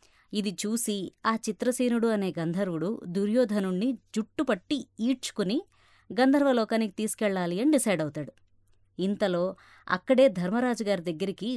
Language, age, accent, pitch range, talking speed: Telugu, 20-39, native, 180-235 Hz, 105 wpm